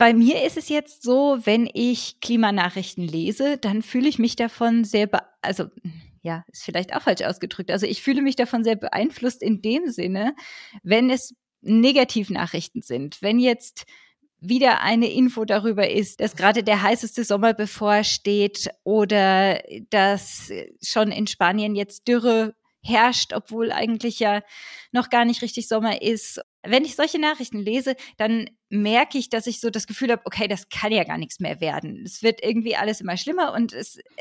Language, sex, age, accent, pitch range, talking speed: German, female, 20-39, German, 210-250 Hz, 170 wpm